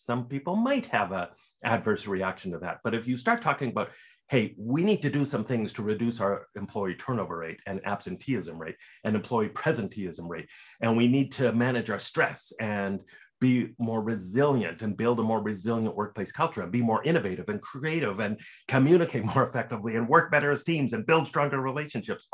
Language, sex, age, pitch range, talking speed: English, male, 40-59, 105-140 Hz, 195 wpm